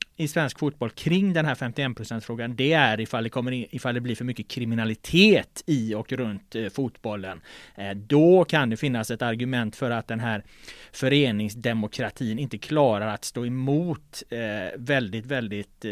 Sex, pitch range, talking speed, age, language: male, 115-160 Hz, 145 wpm, 30-49, Swedish